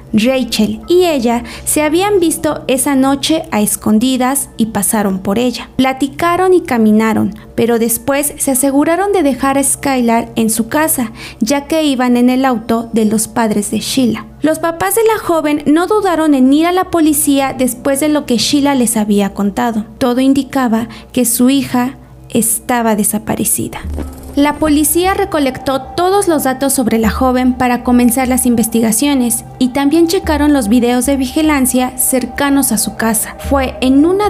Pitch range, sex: 235-300 Hz, female